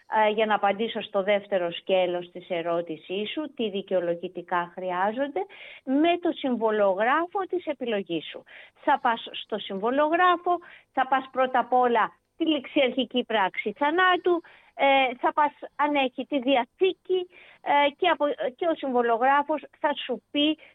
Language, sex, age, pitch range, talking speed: Greek, female, 30-49, 220-295 Hz, 125 wpm